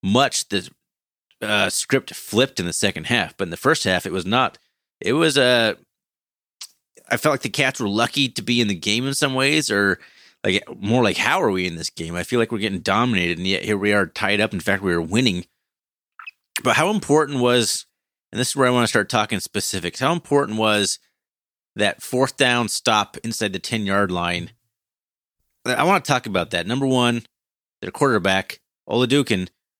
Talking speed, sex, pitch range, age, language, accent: 200 wpm, male, 105-140 Hz, 30-49, English, American